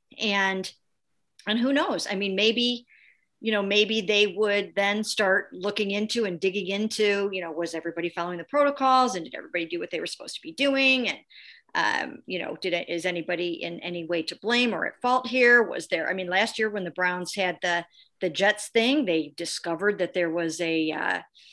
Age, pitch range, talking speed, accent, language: 50-69, 175-220 Hz, 205 wpm, American, English